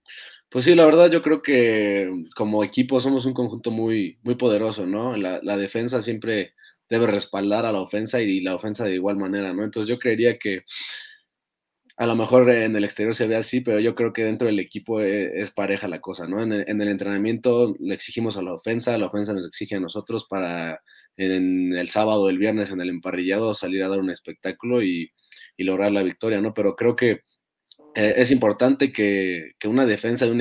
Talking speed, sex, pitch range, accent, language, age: 215 wpm, male, 95-115 Hz, Mexican, Spanish, 20-39